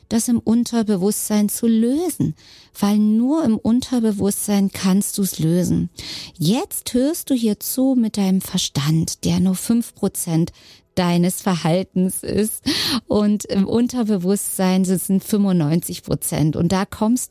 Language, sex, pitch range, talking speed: German, female, 170-210 Hz, 120 wpm